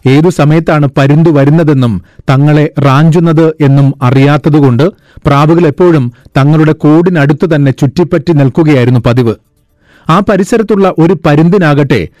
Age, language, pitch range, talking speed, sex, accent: 40-59, Malayalam, 140-165 Hz, 95 wpm, male, native